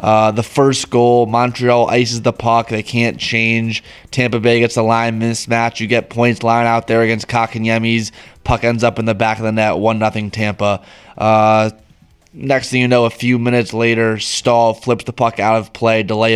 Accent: American